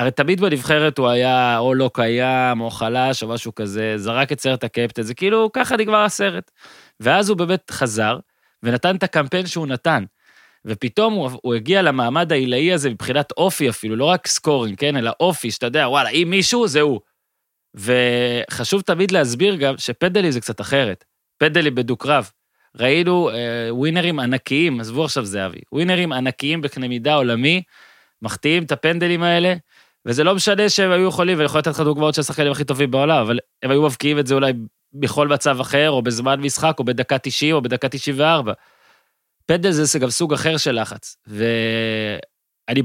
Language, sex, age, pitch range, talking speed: Hebrew, male, 20-39, 125-175 Hz, 165 wpm